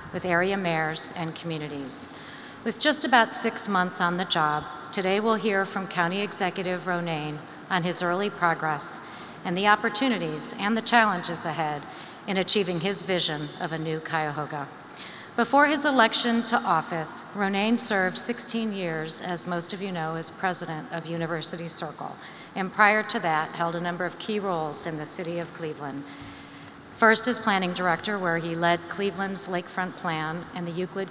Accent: American